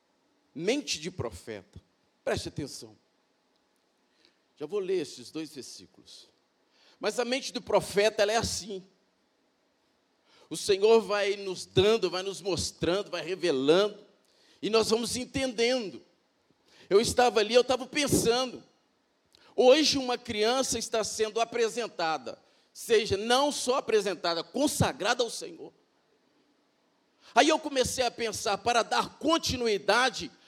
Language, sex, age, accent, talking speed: Portuguese, male, 50-69, Brazilian, 120 wpm